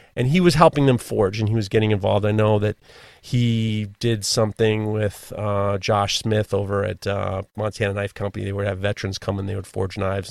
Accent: American